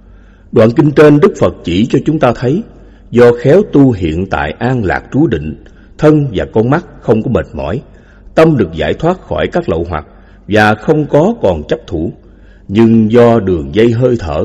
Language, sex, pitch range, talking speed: Vietnamese, male, 95-135 Hz, 195 wpm